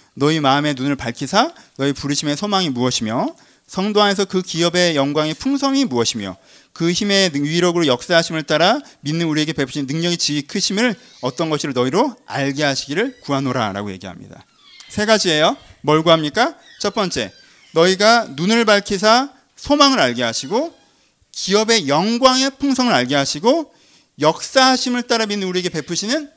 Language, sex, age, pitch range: Korean, male, 30-49, 155-240 Hz